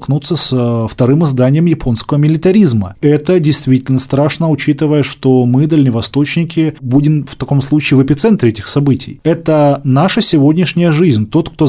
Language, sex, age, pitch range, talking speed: Russian, male, 20-39, 130-165 Hz, 135 wpm